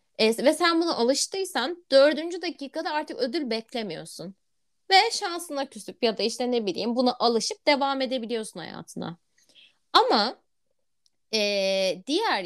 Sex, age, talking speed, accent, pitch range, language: female, 20-39, 120 wpm, native, 215-350 Hz, Turkish